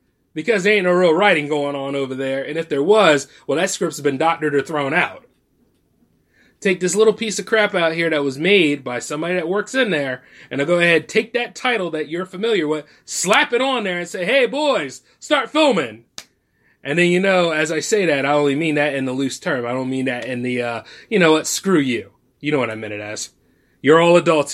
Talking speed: 240 wpm